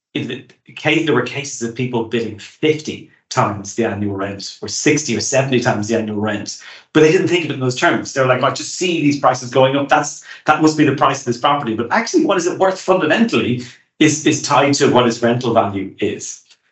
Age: 40-59